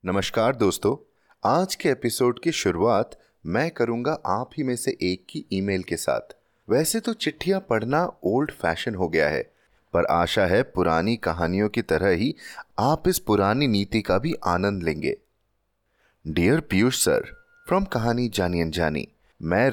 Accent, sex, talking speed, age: native, male, 155 wpm, 30-49